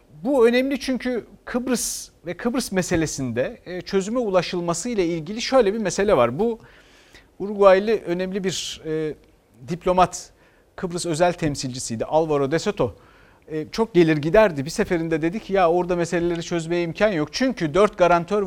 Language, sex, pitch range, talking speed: Turkish, male, 165-220 Hz, 135 wpm